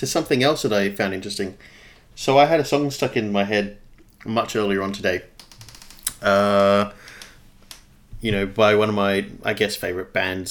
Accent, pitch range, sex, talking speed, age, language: Australian, 100-115 Hz, male, 175 wpm, 30-49, English